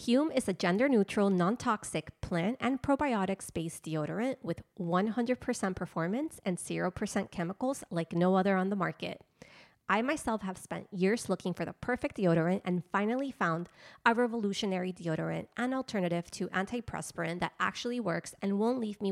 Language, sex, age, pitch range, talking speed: English, female, 20-39, 175-225 Hz, 150 wpm